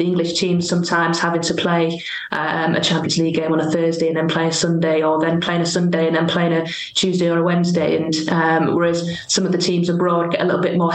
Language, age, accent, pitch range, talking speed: English, 20-39, British, 165-180 Hz, 250 wpm